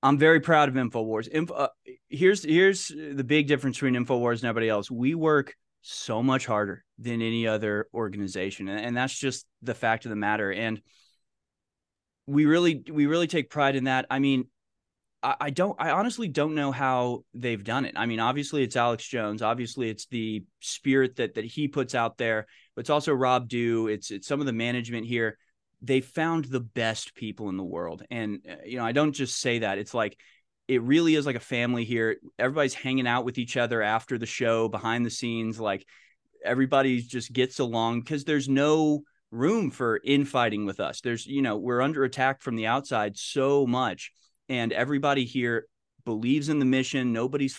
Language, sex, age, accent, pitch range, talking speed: English, male, 20-39, American, 115-135 Hz, 195 wpm